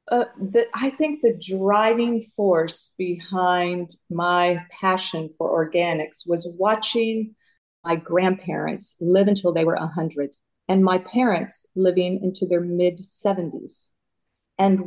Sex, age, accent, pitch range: female, 40-59, American, 170-200 Hz